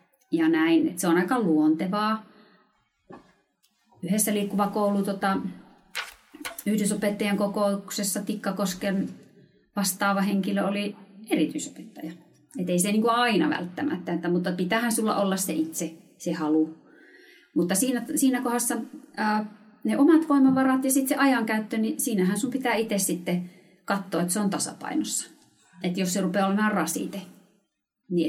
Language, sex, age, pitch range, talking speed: Finnish, female, 30-49, 180-240 Hz, 130 wpm